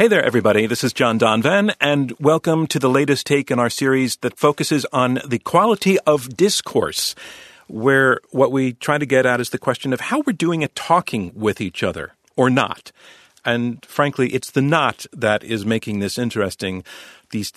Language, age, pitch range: English, 40-59, 115-155 Hz